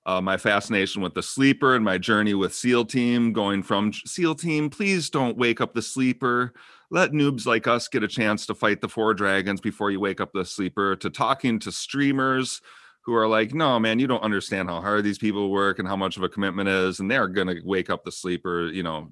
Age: 40-59